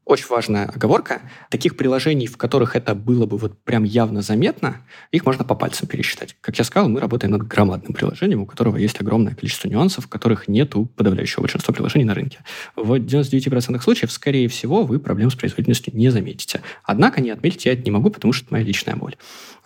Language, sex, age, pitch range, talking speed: Russian, male, 20-39, 105-130 Hz, 200 wpm